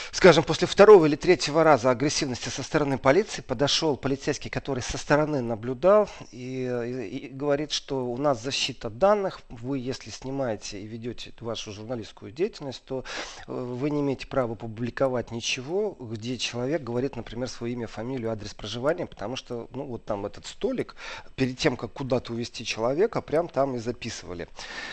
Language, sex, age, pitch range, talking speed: Russian, male, 40-59, 115-145 Hz, 160 wpm